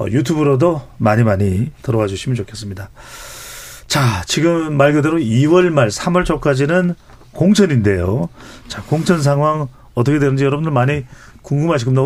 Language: Korean